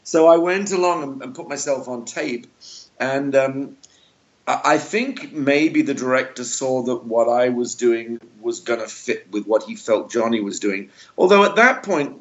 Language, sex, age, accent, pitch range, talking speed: English, male, 50-69, British, 110-140 Hz, 180 wpm